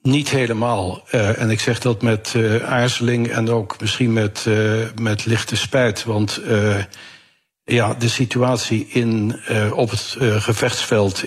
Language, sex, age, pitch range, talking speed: Dutch, male, 60-79, 105-120 Hz, 155 wpm